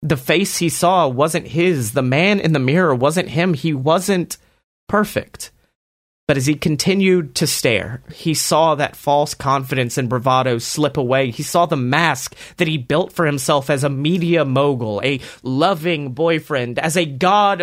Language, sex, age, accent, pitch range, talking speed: English, male, 30-49, American, 135-160 Hz, 170 wpm